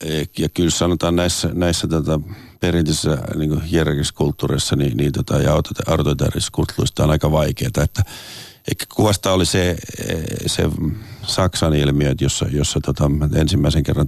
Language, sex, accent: Finnish, male, native